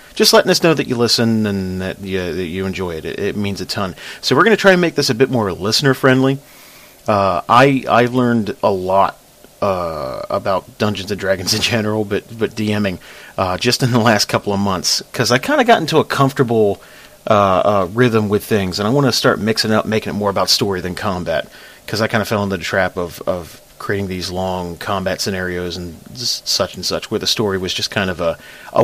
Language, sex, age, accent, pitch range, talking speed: English, male, 40-59, American, 95-125 Hz, 230 wpm